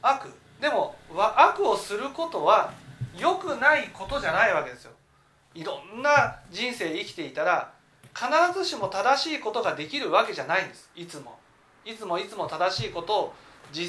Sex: male